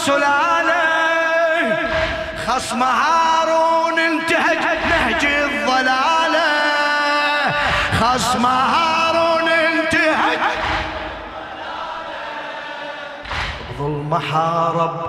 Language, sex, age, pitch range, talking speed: Arabic, male, 20-39, 255-325 Hz, 40 wpm